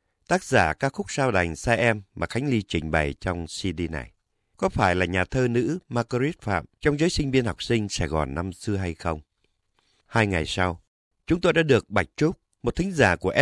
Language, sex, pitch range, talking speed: Vietnamese, male, 90-130 Hz, 220 wpm